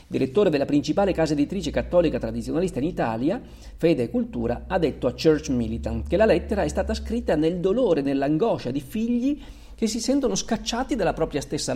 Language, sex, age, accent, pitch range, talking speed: Italian, male, 50-69, native, 120-200 Hz, 180 wpm